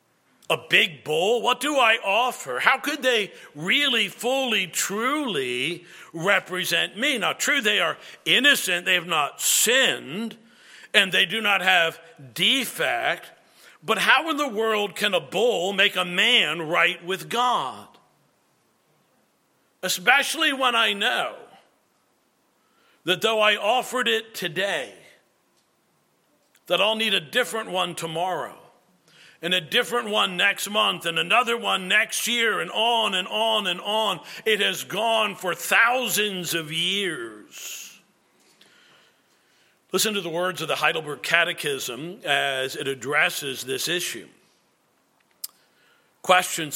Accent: American